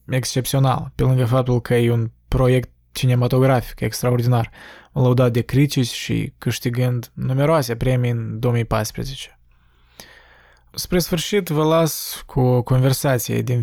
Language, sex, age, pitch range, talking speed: Romanian, male, 20-39, 120-145 Hz, 120 wpm